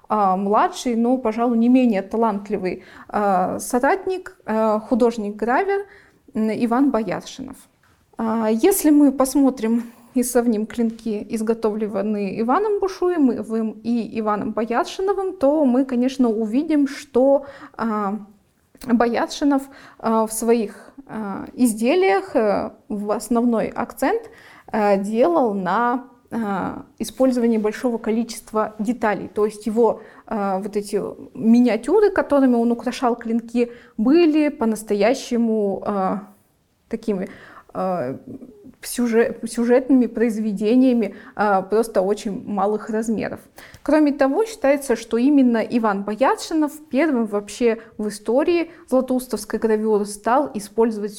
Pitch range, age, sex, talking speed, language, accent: 215-265 Hz, 20-39, female, 85 wpm, Russian, native